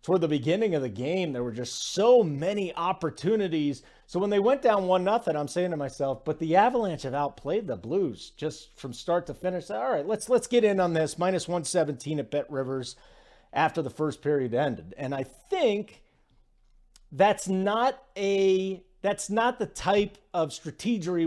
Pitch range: 140-190 Hz